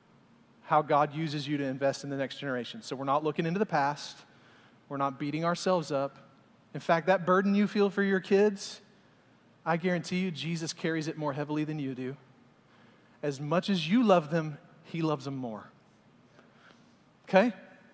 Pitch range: 160-215 Hz